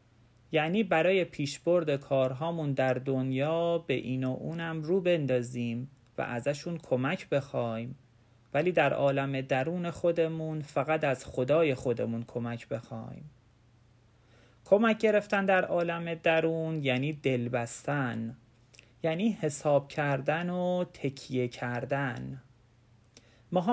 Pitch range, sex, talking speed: 120-160 Hz, male, 105 wpm